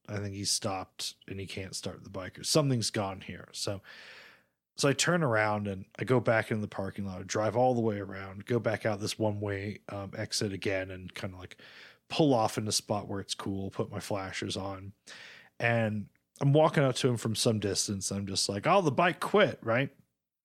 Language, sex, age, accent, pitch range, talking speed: English, male, 30-49, American, 95-125 Hz, 225 wpm